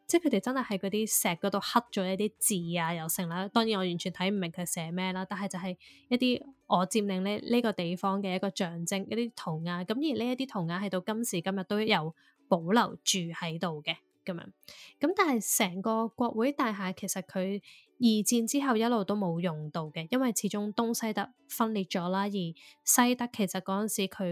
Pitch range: 185-225 Hz